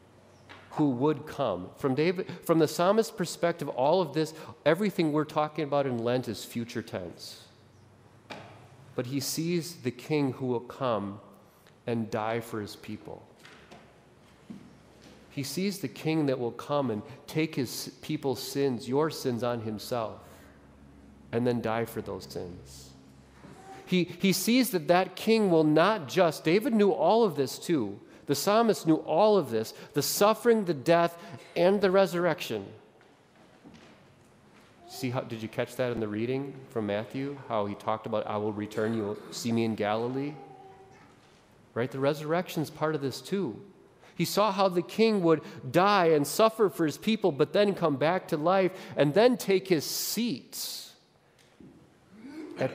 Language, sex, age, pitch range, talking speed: English, male, 40-59, 115-175 Hz, 160 wpm